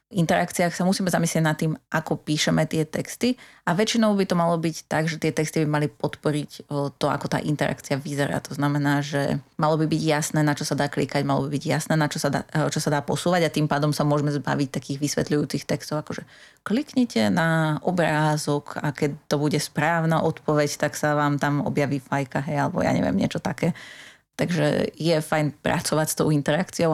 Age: 30-49